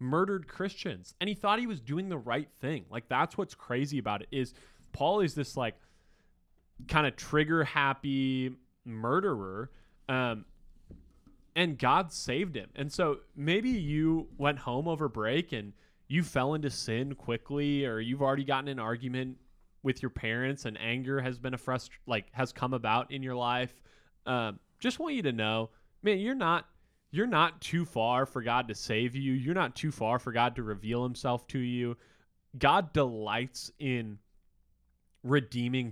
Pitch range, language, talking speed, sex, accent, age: 115-145 Hz, English, 170 wpm, male, American, 20-39